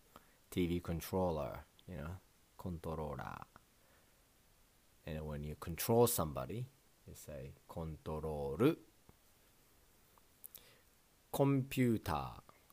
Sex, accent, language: male, native, Japanese